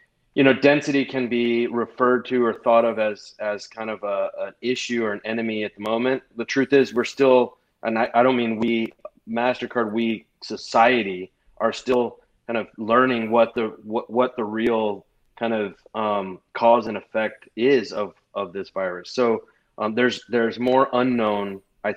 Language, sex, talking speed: English, male, 180 wpm